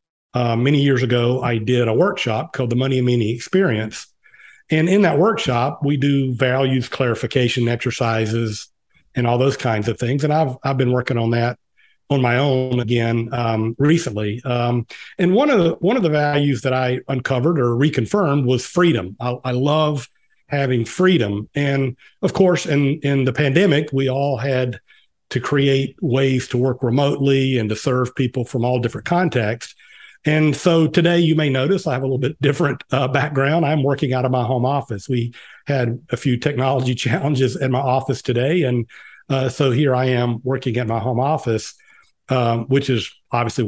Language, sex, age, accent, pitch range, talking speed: English, male, 50-69, American, 120-145 Hz, 185 wpm